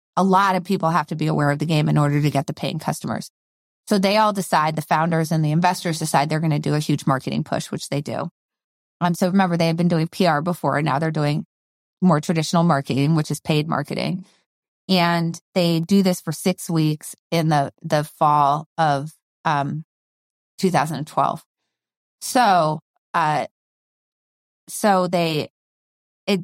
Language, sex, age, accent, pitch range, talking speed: English, female, 30-49, American, 150-185 Hz, 175 wpm